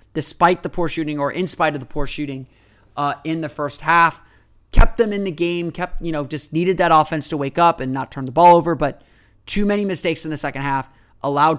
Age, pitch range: 30-49, 135-165 Hz